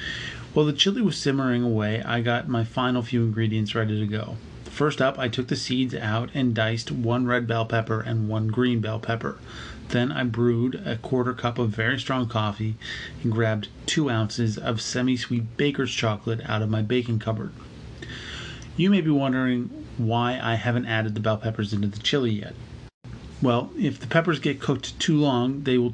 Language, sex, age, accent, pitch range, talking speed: English, male, 30-49, American, 115-130 Hz, 185 wpm